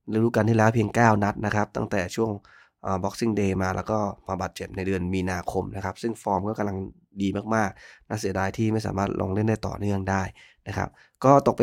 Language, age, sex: Thai, 20-39, male